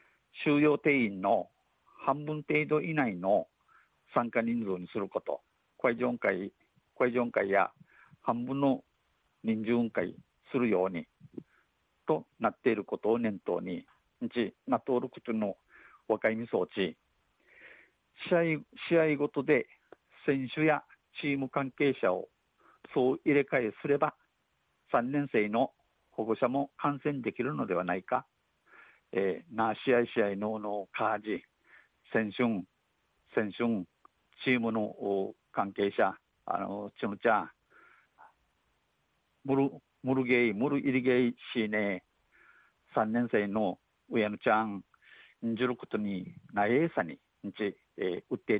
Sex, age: male, 50-69